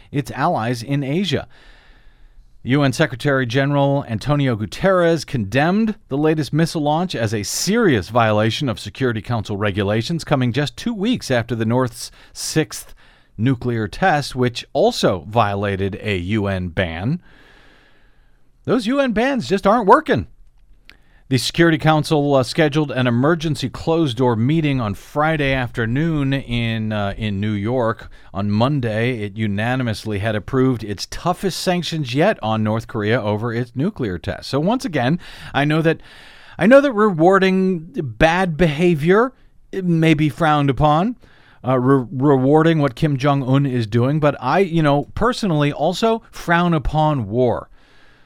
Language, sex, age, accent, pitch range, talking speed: English, male, 40-59, American, 115-160 Hz, 140 wpm